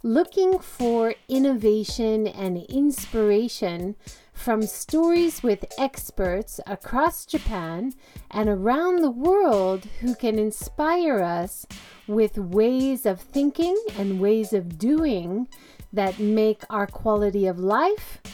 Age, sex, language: 40-59, female, English